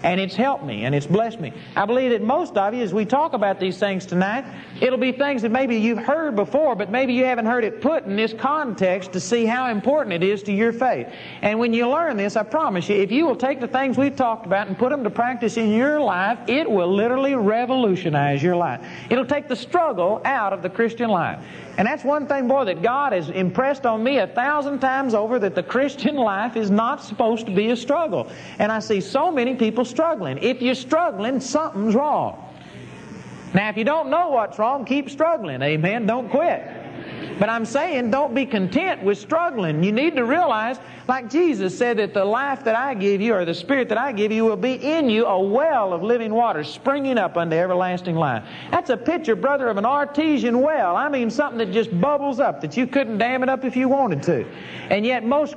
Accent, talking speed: American, 225 wpm